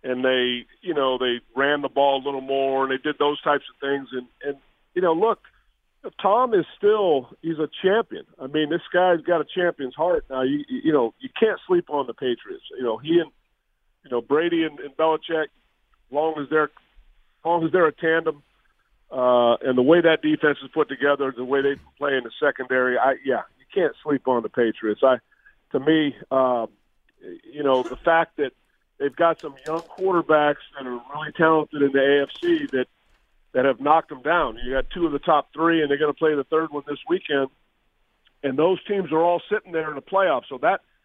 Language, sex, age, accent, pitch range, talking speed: English, male, 50-69, American, 130-165 Hz, 210 wpm